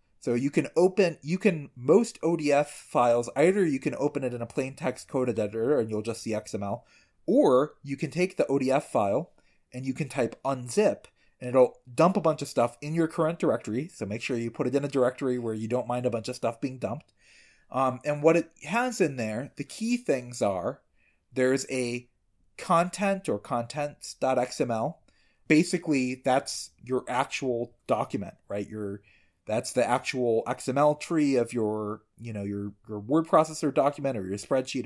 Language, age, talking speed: English, 30-49, 185 wpm